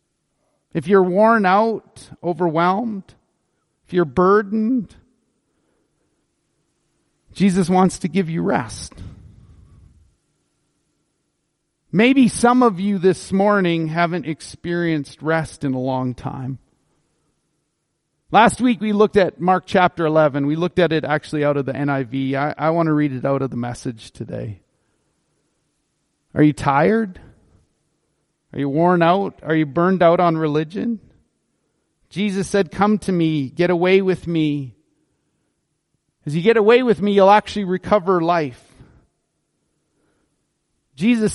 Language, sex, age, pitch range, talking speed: English, male, 40-59, 150-210 Hz, 125 wpm